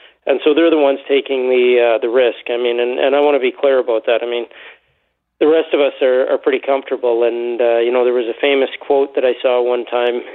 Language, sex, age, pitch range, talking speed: English, male, 40-59, 120-140 Hz, 260 wpm